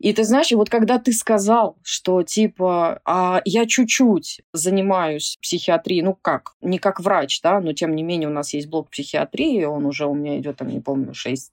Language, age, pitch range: Russian, 20-39, 165-215 Hz